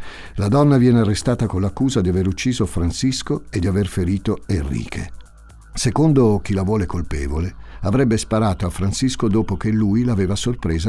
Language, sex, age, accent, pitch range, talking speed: Italian, male, 50-69, native, 80-110 Hz, 160 wpm